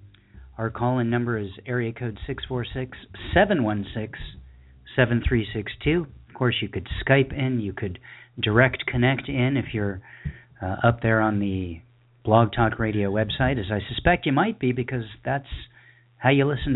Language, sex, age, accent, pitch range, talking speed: English, male, 40-59, American, 110-130 Hz, 145 wpm